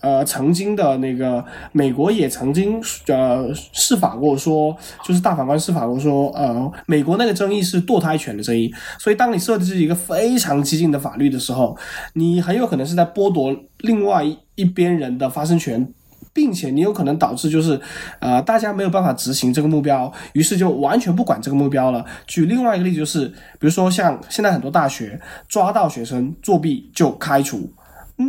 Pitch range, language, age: 140-190 Hz, Chinese, 20-39